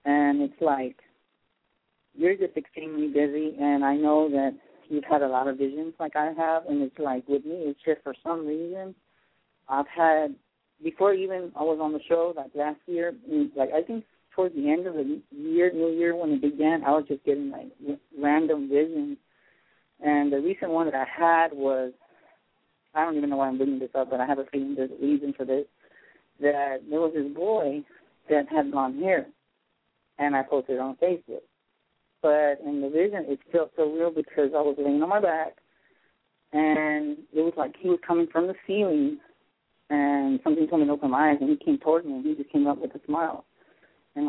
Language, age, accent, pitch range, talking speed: English, 40-59, American, 145-175 Hz, 205 wpm